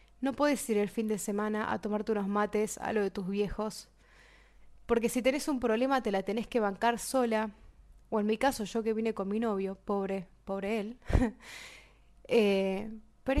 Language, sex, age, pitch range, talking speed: Spanish, female, 20-39, 205-260 Hz, 190 wpm